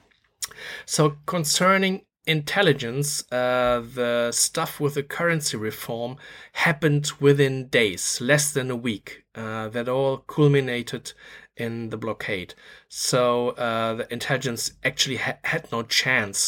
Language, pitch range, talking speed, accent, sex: English, 115-140 Hz, 120 wpm, German, male